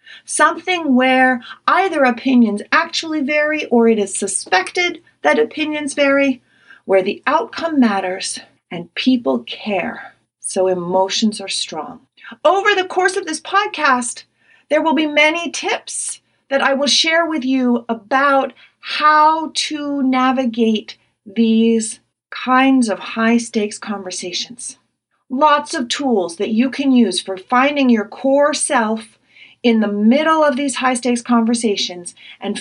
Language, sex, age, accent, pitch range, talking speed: English, female, 40-59, American, 220-280 Hz, 130 wpm